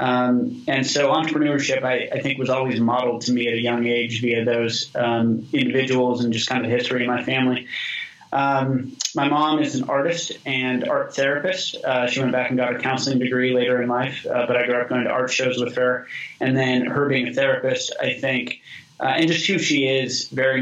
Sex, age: male, 20-39